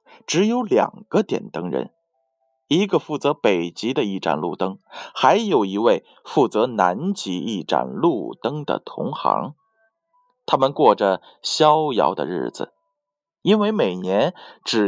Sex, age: male, 20-39